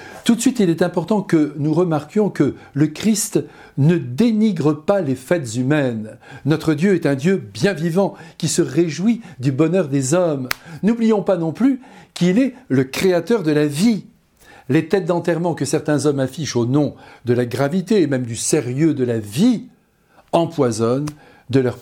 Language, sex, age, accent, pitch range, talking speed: French, male, 60-79, French, 125-180 Hz, 180 wpm